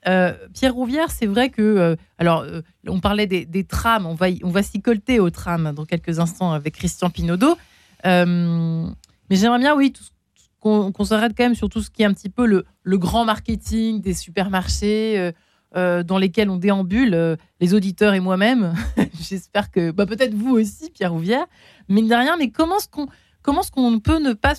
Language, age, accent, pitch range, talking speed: French, 30-49, French, 175-230 Hz, 205 wpm